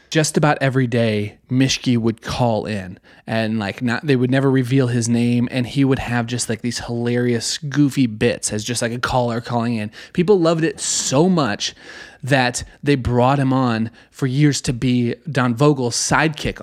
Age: 30-49